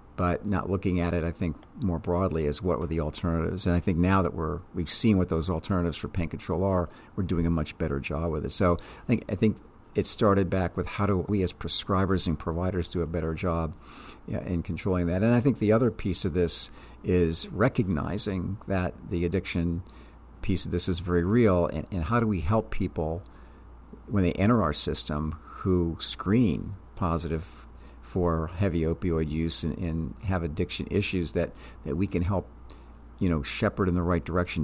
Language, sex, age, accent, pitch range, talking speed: English, male, 50-69, American, 80-95 Hz, 200 wpm